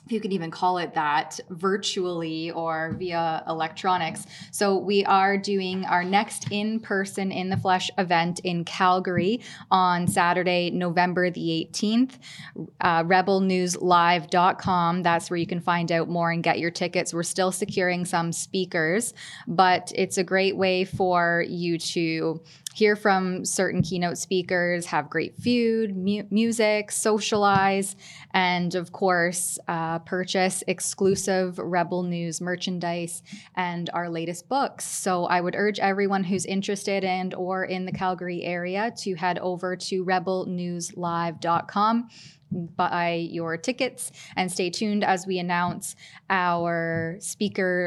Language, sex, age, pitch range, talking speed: English, female, 20-39, 170-195 Hz, 130 wpm